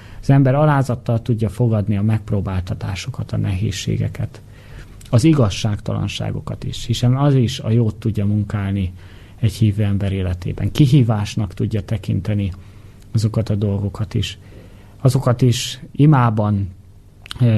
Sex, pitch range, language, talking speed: male, 100-120 Hz, Hungarian, 115 wpm